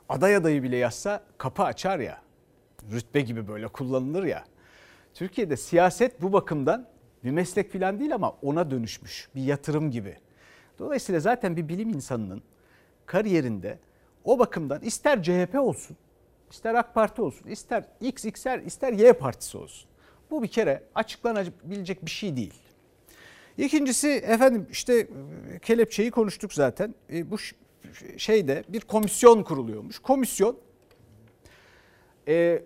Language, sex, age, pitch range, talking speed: Turkish, male, 60-79, 140-220 Hz, 125 wpm